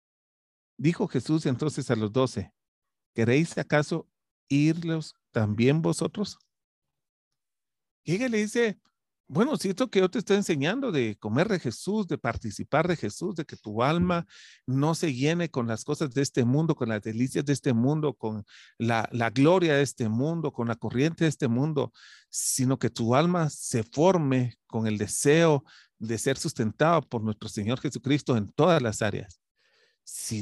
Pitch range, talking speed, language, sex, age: 115-170 Hz, 165 wpm, Spanish, male, 40-59